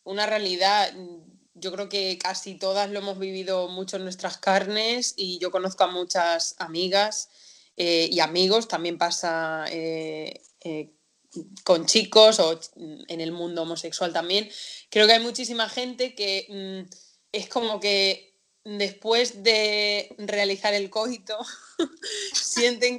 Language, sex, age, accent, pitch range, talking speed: Spanish, female, 20-39, Spanish, 185-225 Hz, 135 wpm